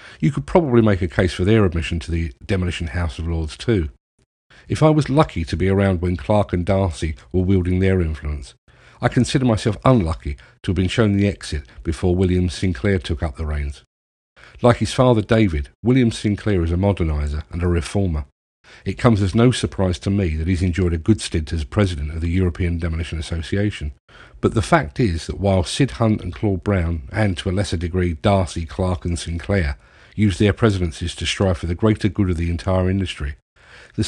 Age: 50-69